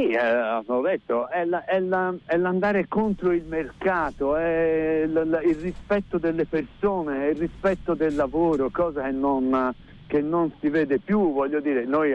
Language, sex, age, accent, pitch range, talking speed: Italian, male, 60-79, native, 130-180 Hz, 170 wpm